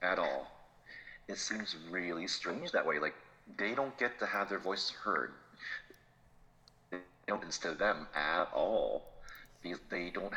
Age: 40-59